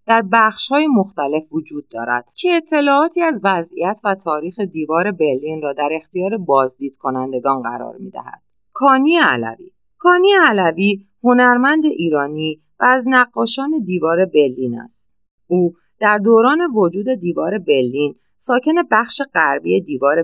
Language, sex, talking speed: Persian, female, 130 wpm